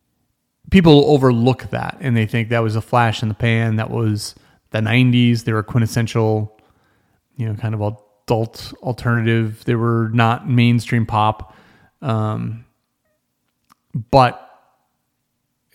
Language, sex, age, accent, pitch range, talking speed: English, male, 30-49, American, 110-130 Hz, 125 wpm